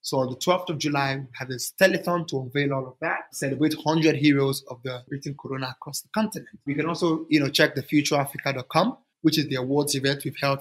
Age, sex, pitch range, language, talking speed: 30-49, male, 135-160 Hz, English, 225 wpm